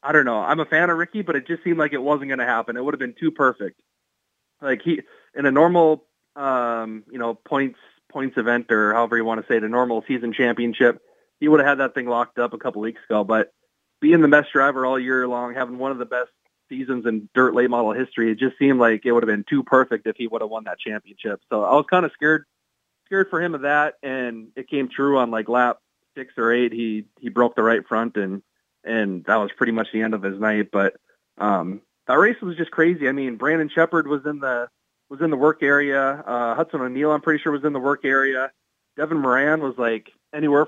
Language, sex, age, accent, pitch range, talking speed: English, male, 30-49, American, 115-150 Hz, 245 wpm